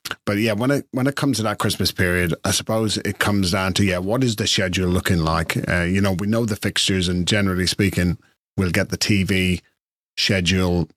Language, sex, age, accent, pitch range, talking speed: English, male, 40-59, British, 90-105 Hz, 210 wpm